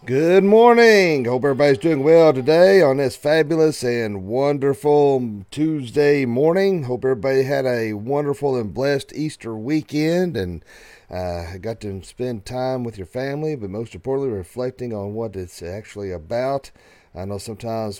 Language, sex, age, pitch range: English, male, 40-59, 100-135 Hz